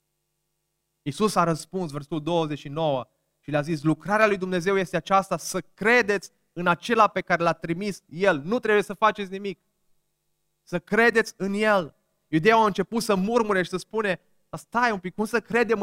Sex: male